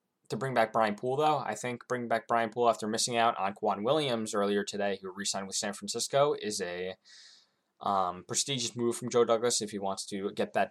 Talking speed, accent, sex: 220 wpm, American, male